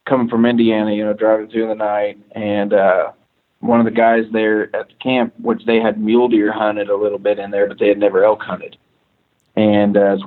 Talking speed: 230 wpm